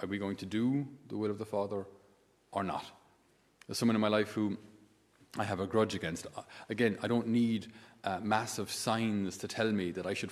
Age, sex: 30-49, male